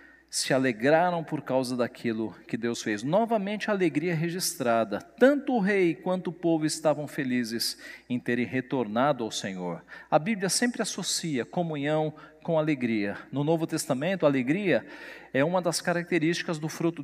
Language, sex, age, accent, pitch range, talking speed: Portuguese, male, 50-69, Brazilian, 160-220 Hz, 150 wpm